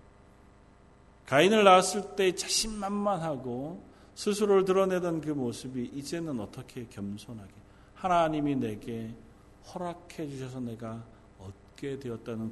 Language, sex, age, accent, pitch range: Korean, male, 40-59, native, 100-150 Hz